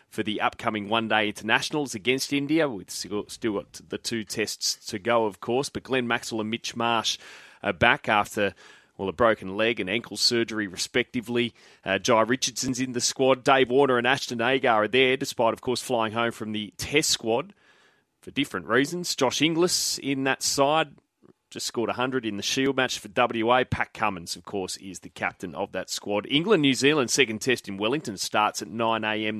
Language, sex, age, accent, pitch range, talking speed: English, male, 30-49, Australian, 105-120 Hz, 190 wpm